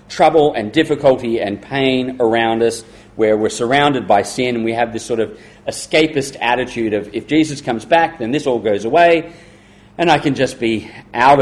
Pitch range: 115-155 Hz